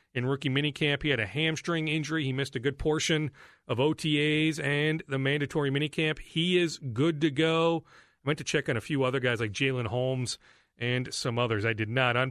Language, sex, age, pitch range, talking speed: English, male, 40-59, 120-150 Hz, 210 wpm